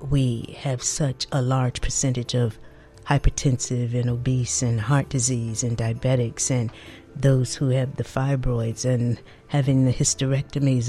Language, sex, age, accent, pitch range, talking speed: English, female, 50-69, American, 130-160 Hz, 140 wpm